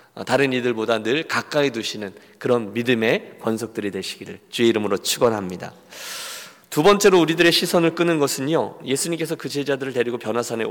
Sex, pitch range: male, 120-165 Hz